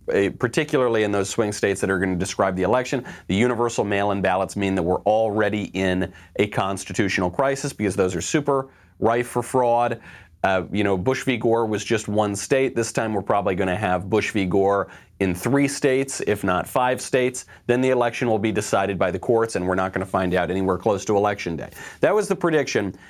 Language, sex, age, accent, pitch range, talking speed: English, male, 30-49, American, 95-125 Hz, 215 wpm